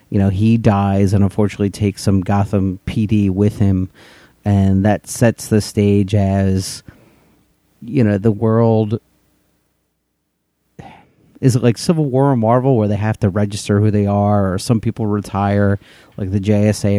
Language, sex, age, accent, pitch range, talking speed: English, male, 40-59, American, 100-110 Hz, 155 wpm